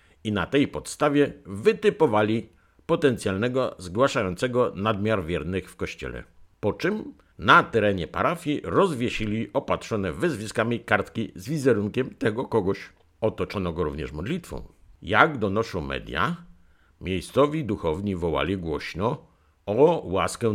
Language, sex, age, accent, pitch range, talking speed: Polish, male, 50-69, native, 90-130 Hz, 110 wpm